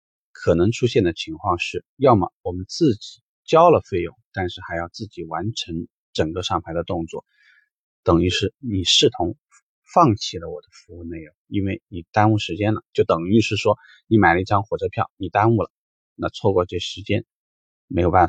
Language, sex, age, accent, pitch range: Chinese, male, 30-49, native, 90-120 Hz